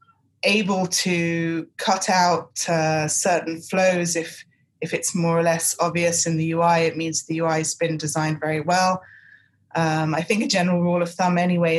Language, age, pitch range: English, 20-39, 165-185 Hz